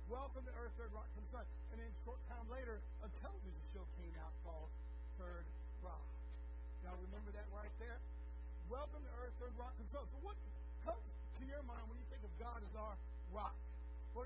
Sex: male